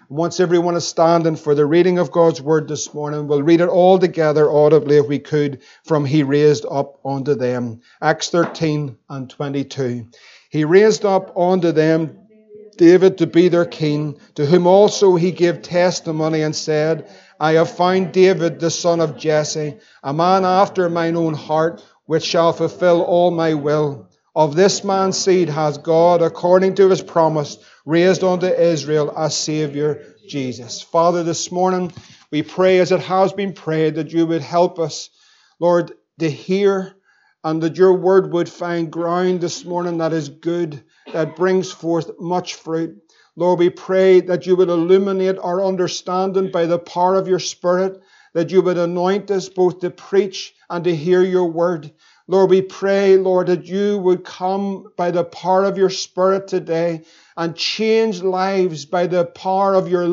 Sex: male